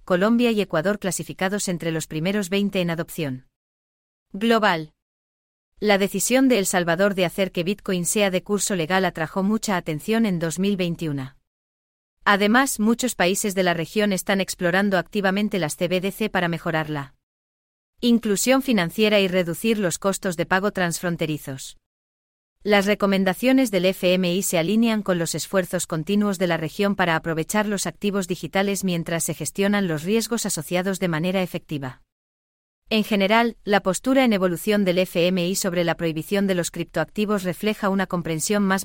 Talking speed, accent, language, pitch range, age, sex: 150 wpm, Spanish, English, 165-205 Hz, 30-49, female